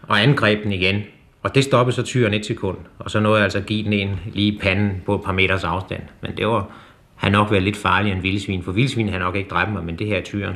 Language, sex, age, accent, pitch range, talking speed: Danish, male, 30-49, native, 95-110 Hz, 260 wpm